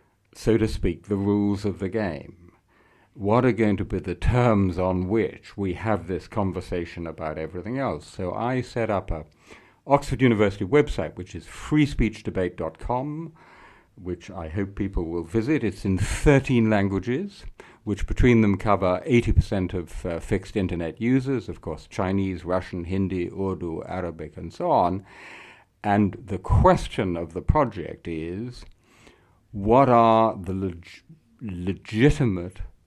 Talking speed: 140 wpm